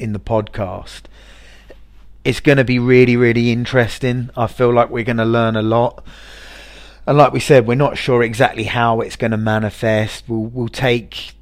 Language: English